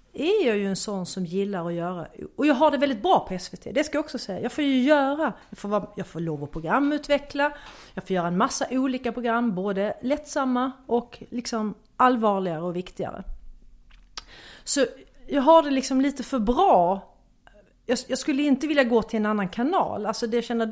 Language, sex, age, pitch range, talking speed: English, female, 40-59, 195-260 Hz, 200 wpm